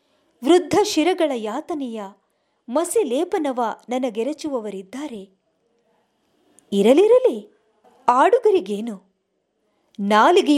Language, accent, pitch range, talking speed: English, Indian, 210-315 Hz, 95 wpm